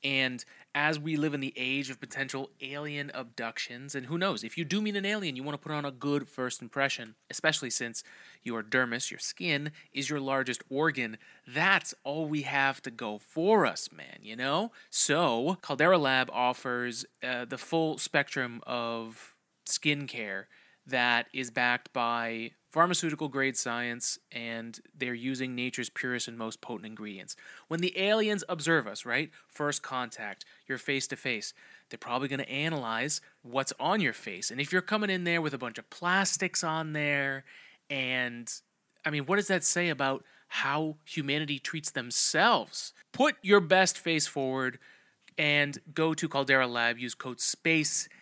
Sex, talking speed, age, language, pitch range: male, 165 wpm, 30-49, English, 125-155 Hz